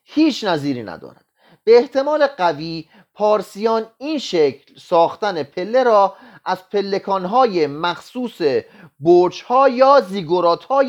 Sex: male